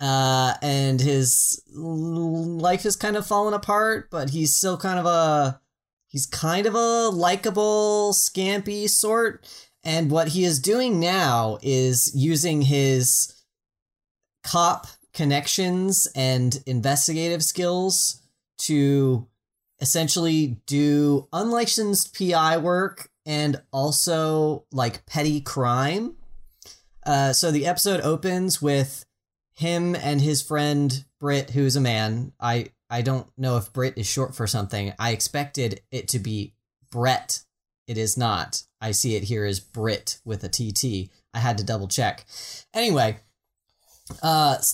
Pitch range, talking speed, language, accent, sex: 125-165 Hz, 130 wpm, English, American, male